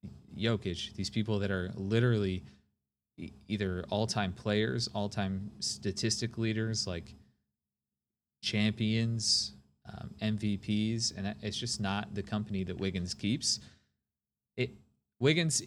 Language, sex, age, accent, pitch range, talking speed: English, male, 20-39, American, 95-115 Hz, 105 wpm